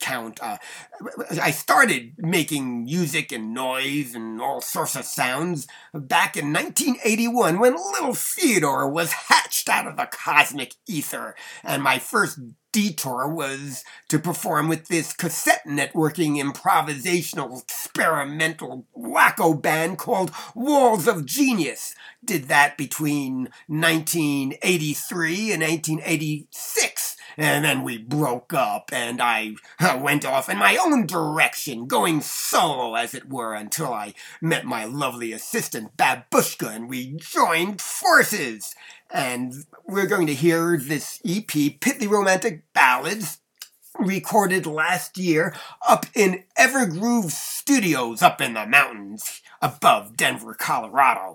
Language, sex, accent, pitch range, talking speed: English, male, American, 140-190 Hz, 120 wpm